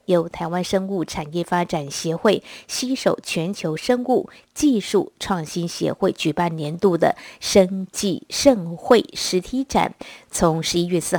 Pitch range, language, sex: 165-210 Hz, Chinese, female